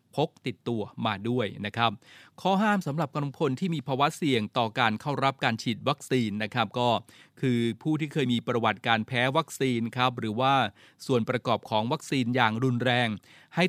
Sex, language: male, Thai